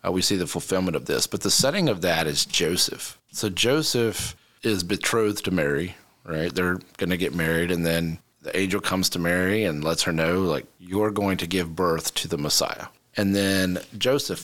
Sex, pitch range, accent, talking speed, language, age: male, 85-105 Hz, American, 205 wpm, English, 30-49